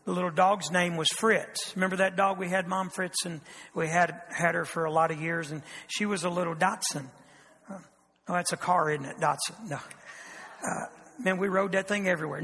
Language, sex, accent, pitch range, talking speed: English, male, American, 165-205 Hz, 215 wpm